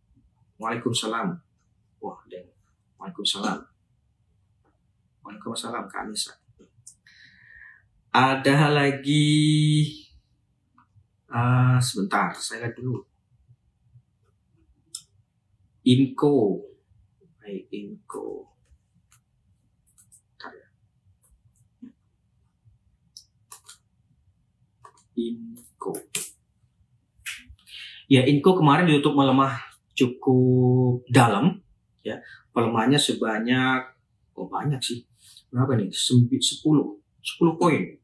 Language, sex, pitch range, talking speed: Indonesian, male, 115-140 Hz, 60 wpm